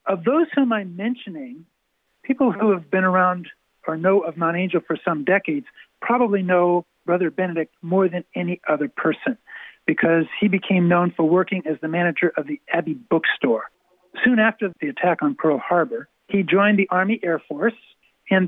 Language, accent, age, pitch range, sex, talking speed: English, American, 60-79, 175-220 Hz, male, 175 wpm